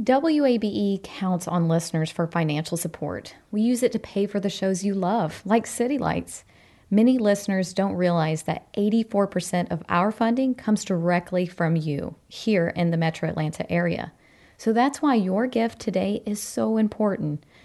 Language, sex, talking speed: English, female, 165 wpm